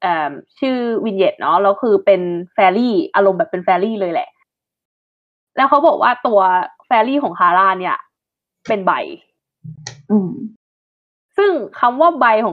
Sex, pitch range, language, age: female, 190-290 Hz, Thai, 20-39